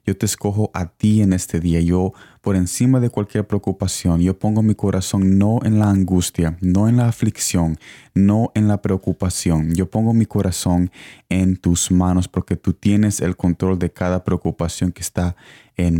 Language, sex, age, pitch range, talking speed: Spanish, male, 20-39, 90-105 Hz, 180 wpm